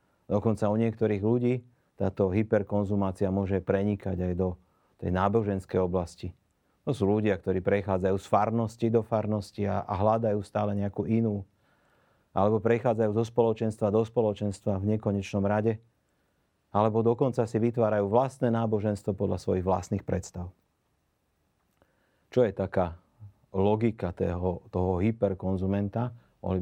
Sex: male